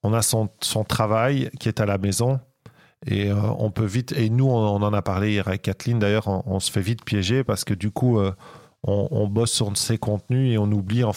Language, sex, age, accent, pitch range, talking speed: English, male, 40-59, French, 100-120 Hz, 255 wpm